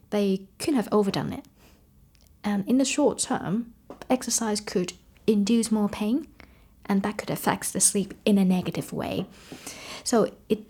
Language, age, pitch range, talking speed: English, 20-39, 185-215 Hz, 150 wpm